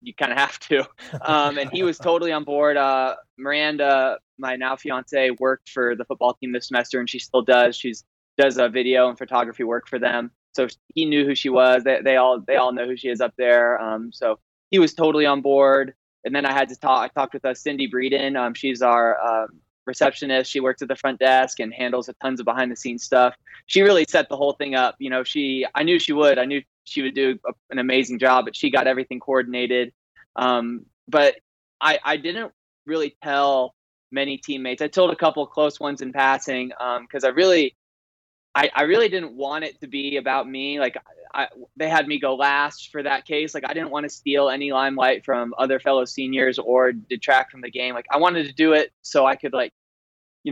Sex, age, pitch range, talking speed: male, 20-39, 125-140 Hz, 225 wpm